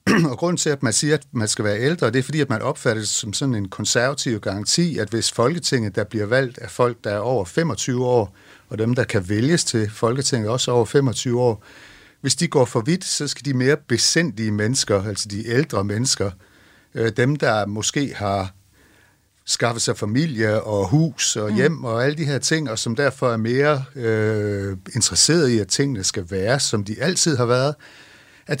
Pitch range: 105-135 Hz